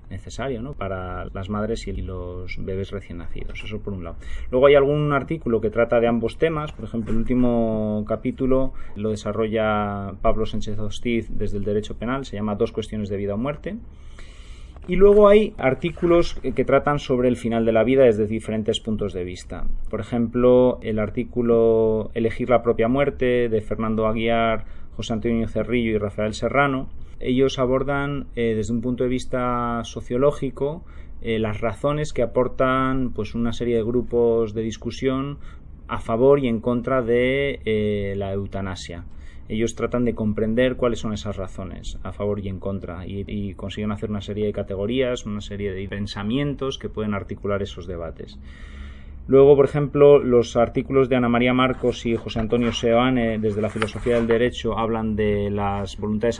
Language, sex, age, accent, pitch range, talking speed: Spanish, male, 30-49, Spanish, 100-125 Hz, 170 wpm